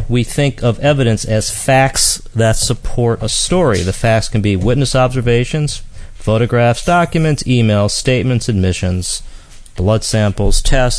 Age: 40-59